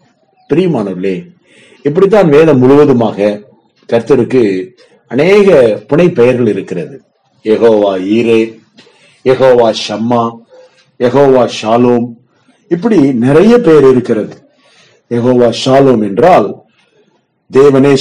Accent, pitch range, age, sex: native, 120-180 Hz, 50-69, male